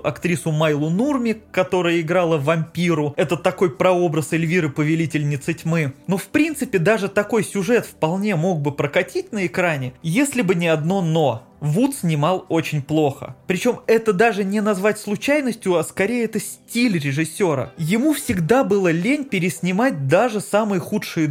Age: 20-39